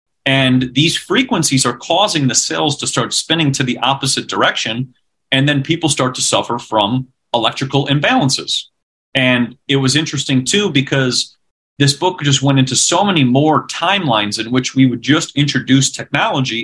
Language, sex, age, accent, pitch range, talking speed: English, male, 40-59, American, 125-145 Hz, 160 wpm